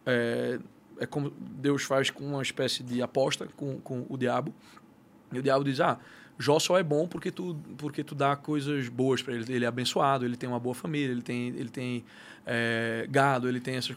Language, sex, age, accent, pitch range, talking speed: Portuguese, male, 20-39, Brazilian, 125-175 Hz, 210 wpm